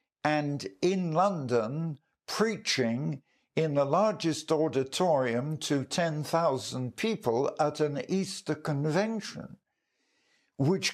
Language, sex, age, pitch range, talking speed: English, male, 60-79, 130-170 Hz, 90 wpm